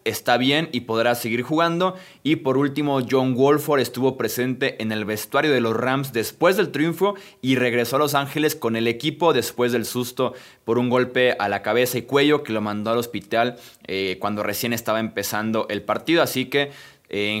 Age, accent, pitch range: 20-39, Mexican, 115-140 Hz